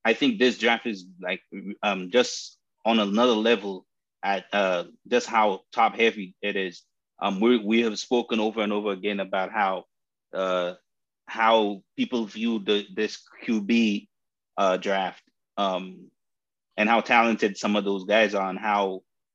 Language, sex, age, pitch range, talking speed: English, male, 30-49, 105-145 Hz, 155 wpm